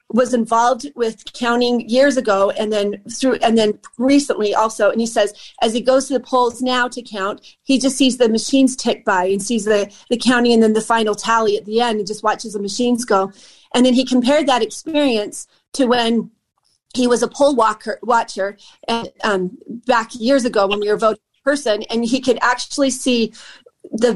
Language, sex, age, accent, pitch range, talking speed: English, female, 40-59, American, 215-255 Hz, 205 wpm